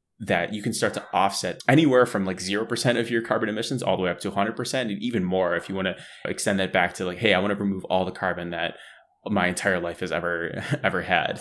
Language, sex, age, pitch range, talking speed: English, male, 20-39, 90-110 Hz, 270 wpm